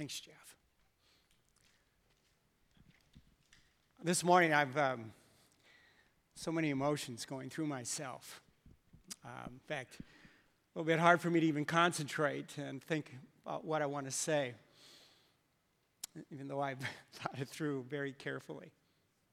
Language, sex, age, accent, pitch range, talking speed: English, male, 50-69, American, 145-170 Hz, 125 wpm